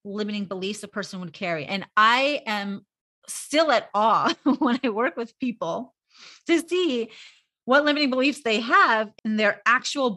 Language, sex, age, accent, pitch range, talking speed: English, female, 30-49, American, 200-250 Hz, 160 wpm